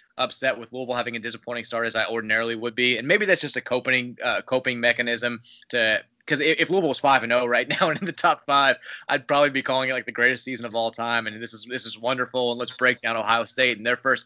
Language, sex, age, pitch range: English, male, 20-39, 115-130 Hz